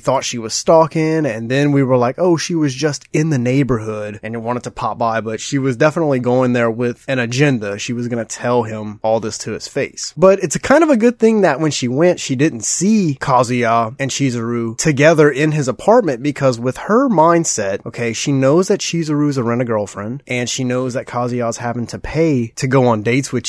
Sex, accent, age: male, American, 20-39